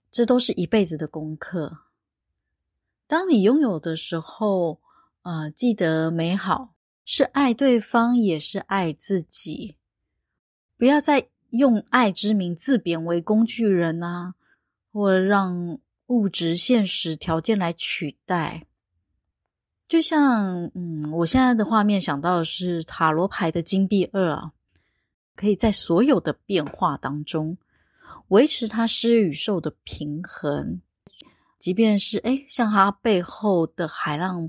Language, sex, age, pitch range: Chinese, female, 20-39, 165-220 Hz